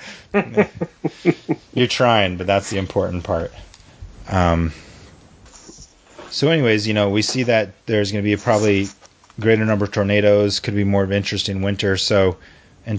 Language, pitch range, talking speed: English, 90-105 Hz, 160 wpm